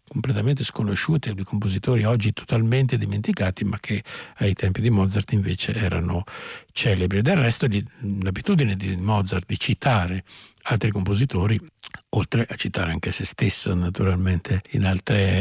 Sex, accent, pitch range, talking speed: male, native, 95-115 Hz, 130 wpm